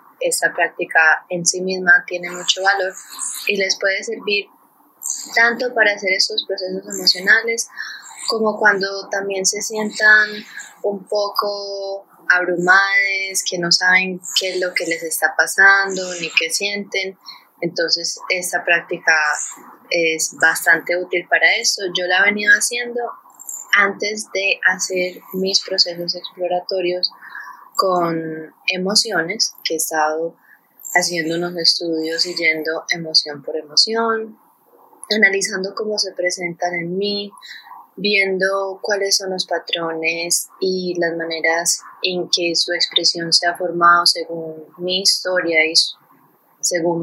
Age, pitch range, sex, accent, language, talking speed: 20-39, 170-200 Hz, female, Colombian, Spanish, 125 wpm